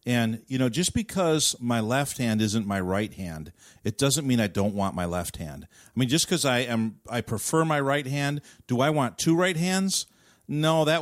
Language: English